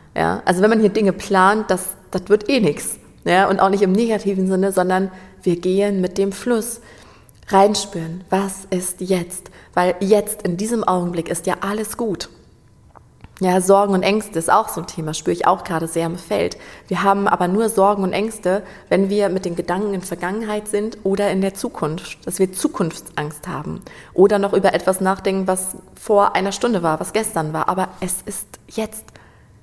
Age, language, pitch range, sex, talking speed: 30-49, German, 180-205 Hz, female, 190 wpm